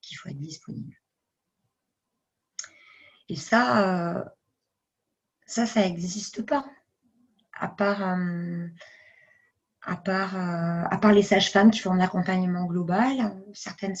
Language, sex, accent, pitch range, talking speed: French, female, French, 175-210 Hz, 115 wpm